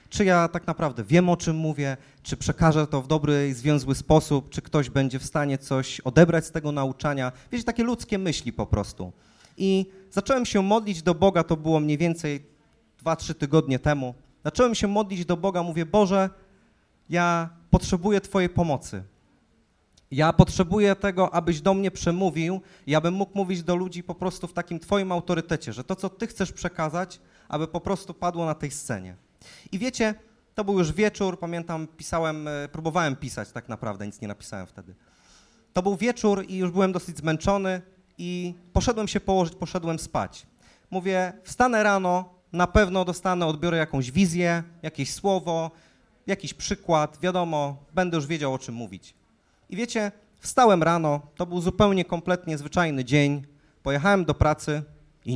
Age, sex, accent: 30-49, male, native